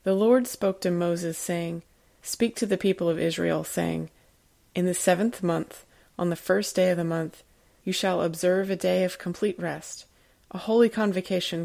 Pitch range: 165-185 Hz